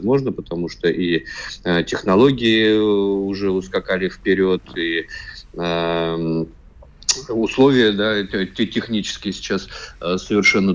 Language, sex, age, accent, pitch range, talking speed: Russian, male, 20-39, native, 90-100 Hz, 90 wpm